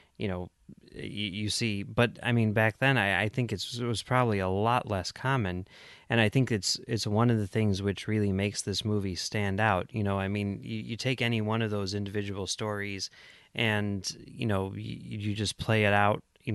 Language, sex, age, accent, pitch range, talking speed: English, male, 30-49, American, 100-115 Hz, 215 wpm